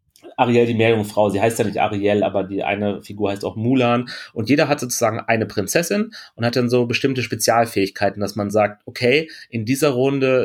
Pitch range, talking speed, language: 105-125 Hz, 195 wpm, German